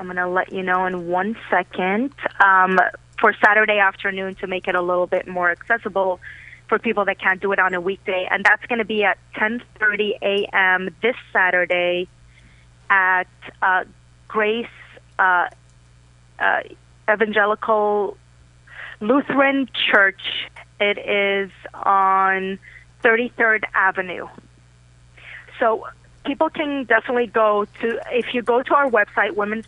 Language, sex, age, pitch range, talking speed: English, female, 30-49, 185-225 Hz, 135 wpm